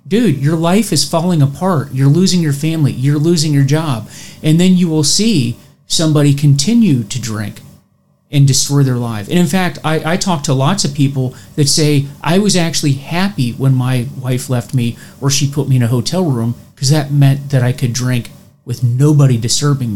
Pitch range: 135-160 Hz